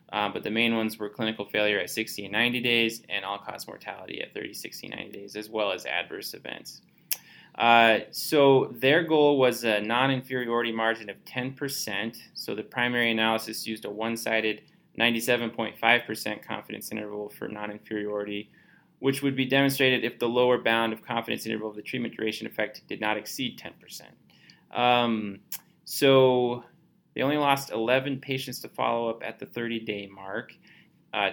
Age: 20-39